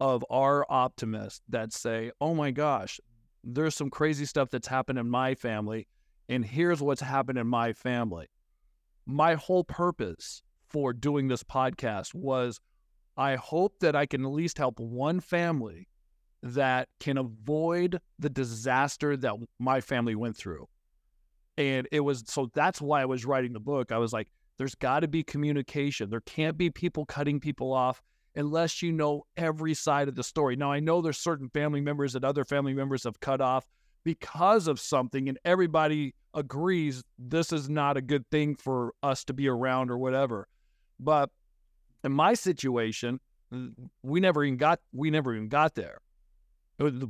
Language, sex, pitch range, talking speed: English, male, 120-150 Hz, 170 wpm